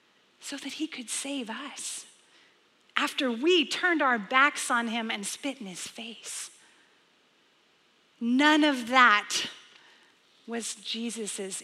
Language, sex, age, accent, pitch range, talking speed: English, female, 40-59, American, 215-290 Hz, 120 wpm